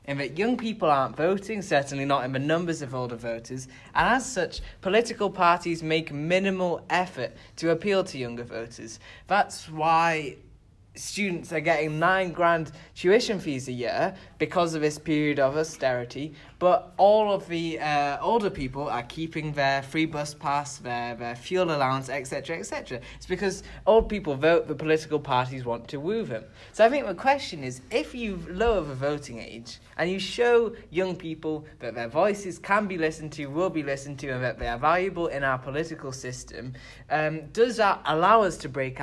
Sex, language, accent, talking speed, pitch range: male, English, British, 180 wpm, 135-180 Hz